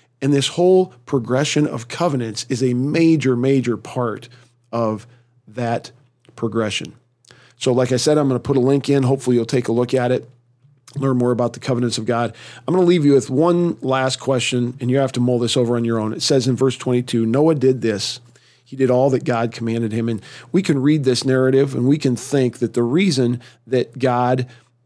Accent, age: American, 40-59